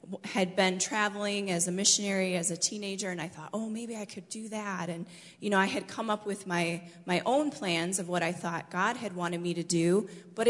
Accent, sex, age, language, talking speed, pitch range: American, female, 20-39, English, 235 wpm, 175-195 Hz